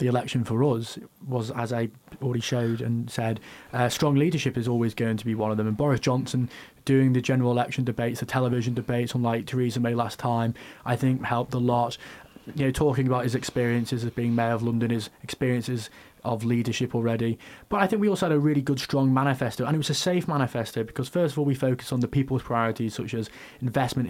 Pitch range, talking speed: 115-135 Hz, 220 wpm